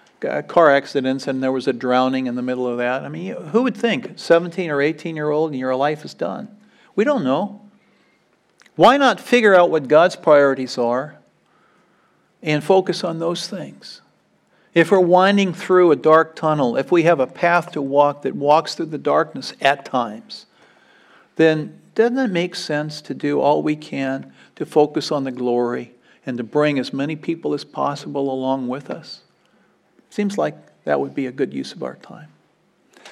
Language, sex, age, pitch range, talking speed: English, male, 50-69, 130-170 Hz, 185 wpm